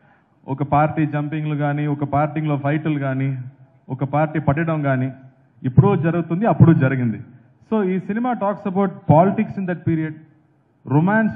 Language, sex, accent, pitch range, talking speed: Telugu, male, native, 140-180 Hz, 135 wpm